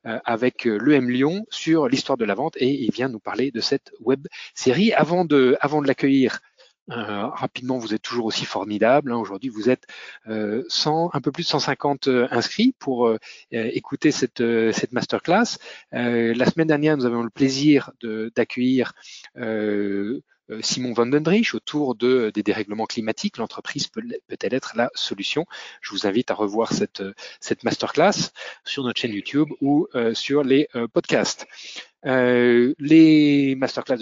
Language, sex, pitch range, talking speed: French, male, 115-150 Hz, 165 wpm